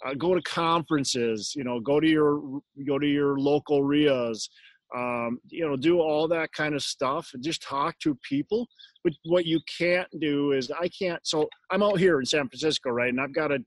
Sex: male